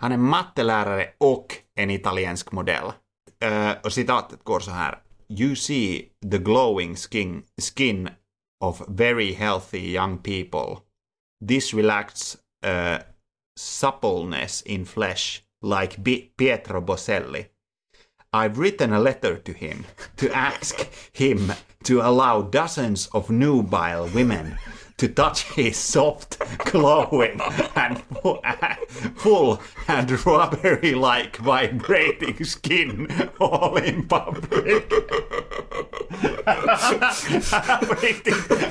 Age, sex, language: 30-49, male, Swedish